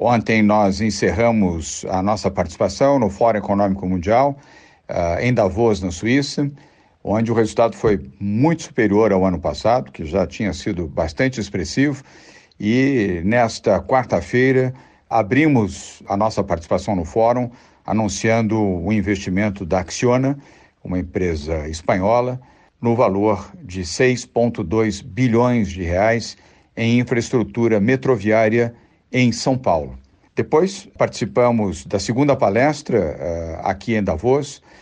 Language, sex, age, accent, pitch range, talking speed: Portuguese, male, 60-79, Brazilian, 95-120 Hz, 115 wpm